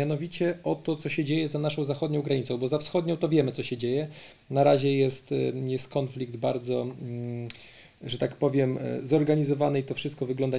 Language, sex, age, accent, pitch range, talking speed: Polish, male, 30-49, native, 130-155 Hz, 180 wpm